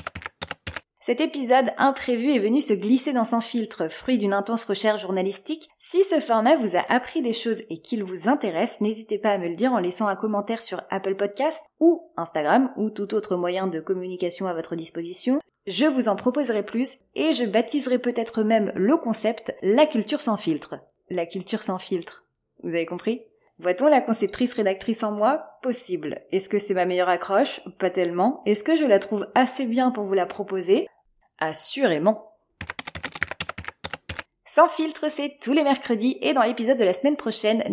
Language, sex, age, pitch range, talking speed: French, female, 20-39, 195-265 Hz, 185 wpm